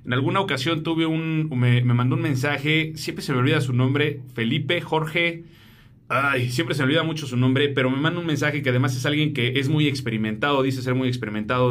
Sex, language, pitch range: male, Spanish, 125-165 Hz